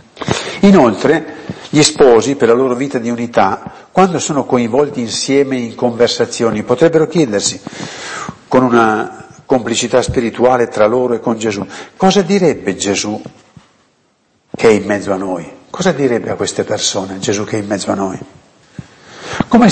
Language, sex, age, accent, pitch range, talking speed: Italian, male, 50-69, native, 110-155 Hz, 145 wpm